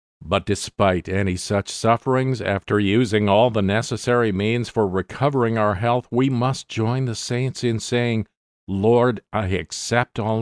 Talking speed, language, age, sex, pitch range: 150 wpm, English, 50-69, male, 90-115 Hz